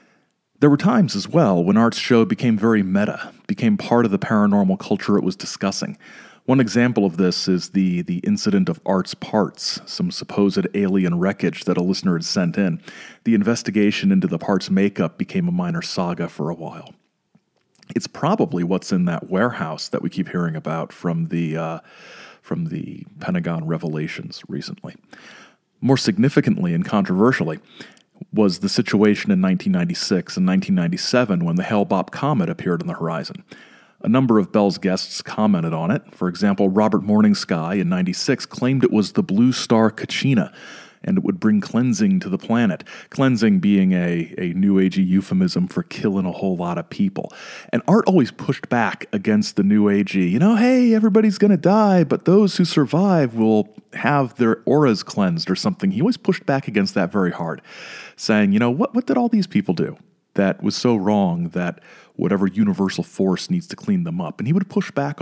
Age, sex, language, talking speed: 40-59, male, English, 180 wpm